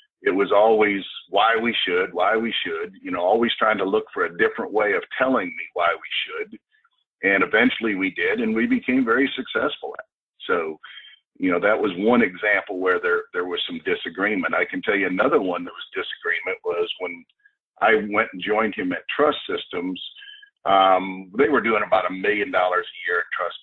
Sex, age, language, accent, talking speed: male, 50-69, English, American, 205 wpm